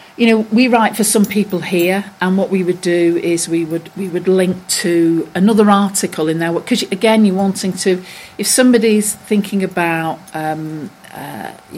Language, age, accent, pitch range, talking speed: English, 40-59, British, 160-195 Hz, 180 wpm